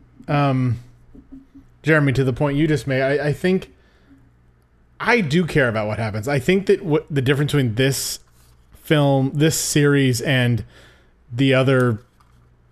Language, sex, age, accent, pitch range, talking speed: English, male, 30-49, American, 115-145 Hz, 145 wpm